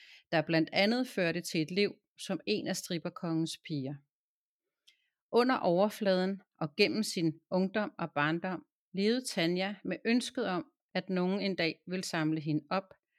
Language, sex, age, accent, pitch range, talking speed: Danish, female, 40-59, native, 160-205 Hz, 150 wpm